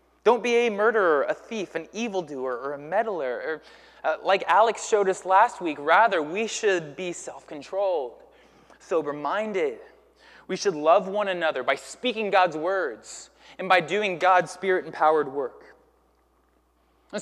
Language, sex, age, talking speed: English, male, 20-39, 140 wpm